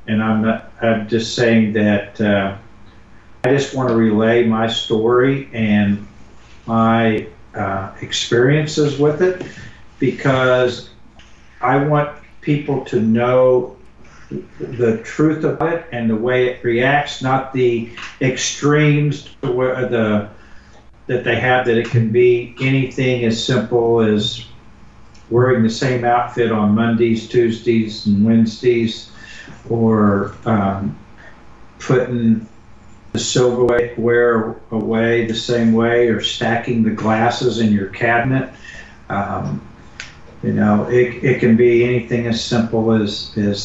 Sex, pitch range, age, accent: male, 110-130 Hz, 50-69, American